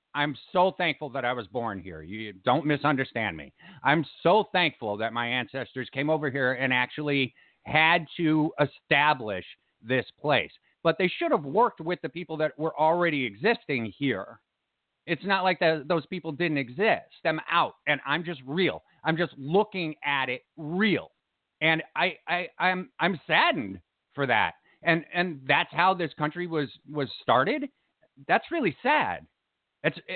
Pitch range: 140-185 Hz